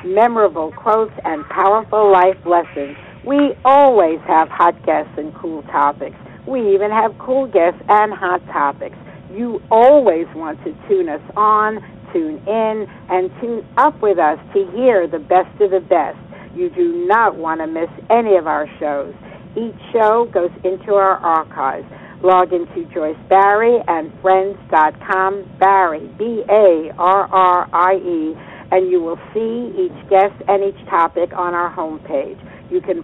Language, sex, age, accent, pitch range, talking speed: English, female, 60-79, American, 170-220 Hz, 145 wpm